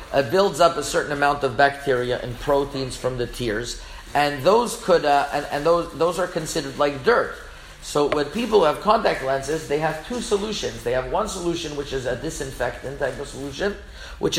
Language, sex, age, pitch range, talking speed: English, male, 40-59, 135-170 Hz, 200 wpm